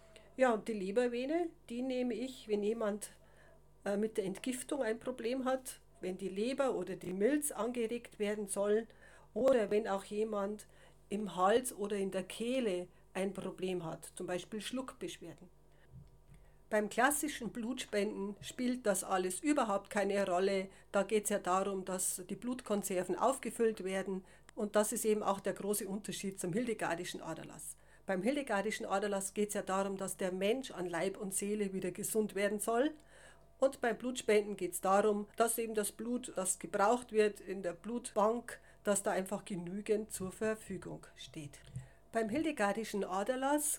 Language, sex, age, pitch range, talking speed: German, female, 40-59, 190-230 Hz, 155 wpm